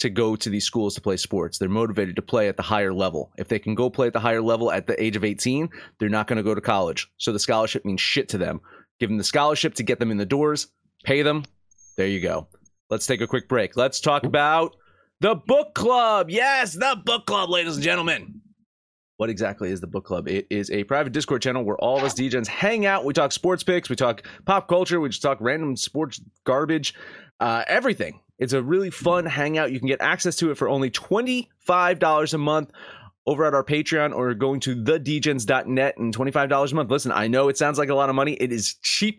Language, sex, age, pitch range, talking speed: English, male, 30-49, 115-165 Hz, 235 wpm